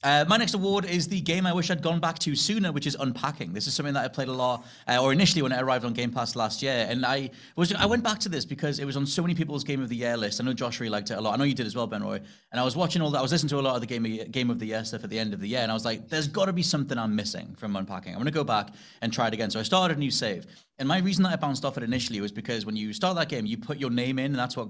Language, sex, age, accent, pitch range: English, male, 30-49, British, 115-150 Hz